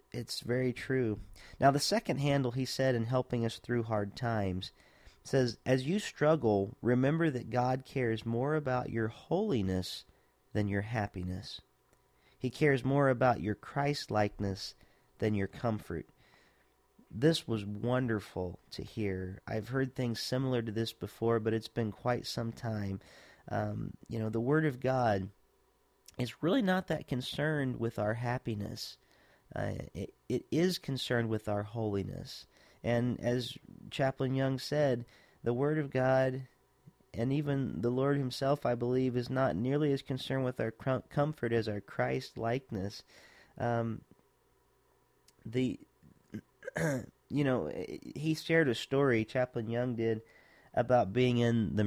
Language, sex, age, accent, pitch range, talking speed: English, male, 40-59, American, 110-135 Hz, 140 wpm